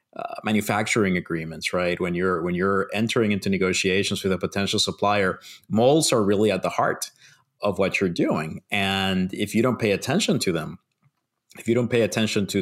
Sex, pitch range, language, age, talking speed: male, 90-115 Hz, English, 30-49, 180 wpm